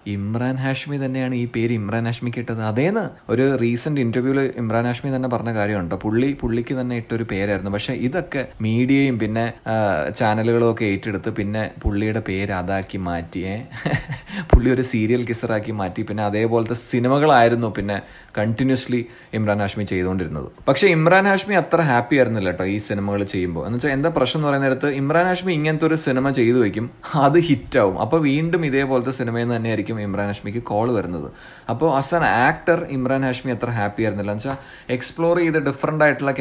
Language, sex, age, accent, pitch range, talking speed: Malayalam, male, 30-49, native, 105-135 Hz, 160 wpm